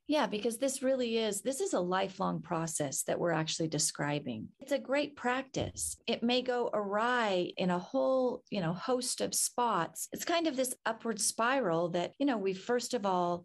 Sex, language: female, English